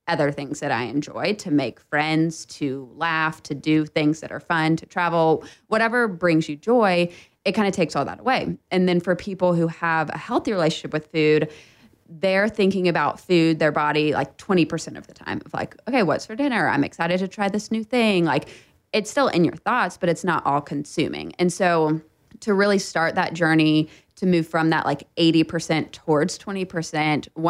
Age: 20-39